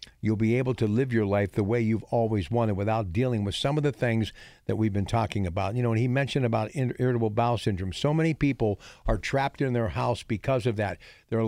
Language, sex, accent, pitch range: English, male, American, 110-140 Hz